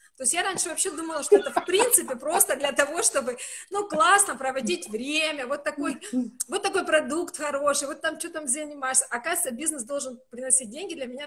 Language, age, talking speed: Russian, 20-39, 185 wpm